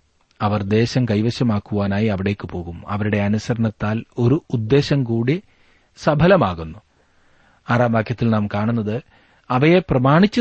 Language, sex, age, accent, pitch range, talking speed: Malayalam, male, 40-59, native, 100-140 Hz, 100 wpm